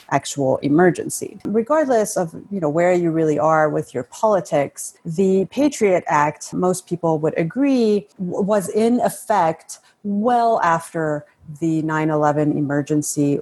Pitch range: 155-215 Hz